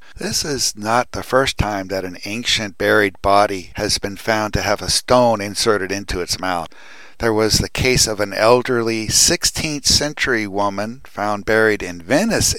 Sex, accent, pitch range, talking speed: male, American, 95-120 Hz, 170 wpm